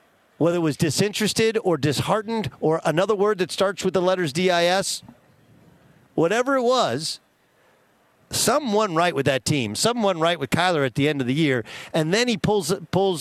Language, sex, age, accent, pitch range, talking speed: English, male, 50-69, American, 140-190 Hz, 180 wpm